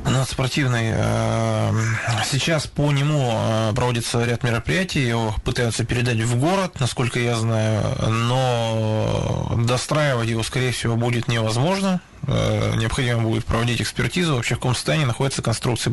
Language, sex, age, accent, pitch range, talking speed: Russian, male, 20-39, native, 115-140 Hz, 125 wpm